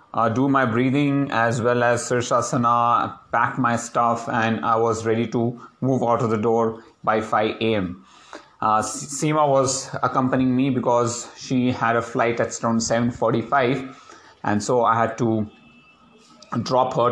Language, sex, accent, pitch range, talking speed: English, male, Indian, 115-135 Hz, 155 wpm